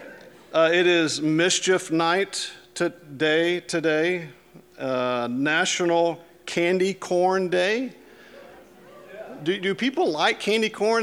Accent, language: American, English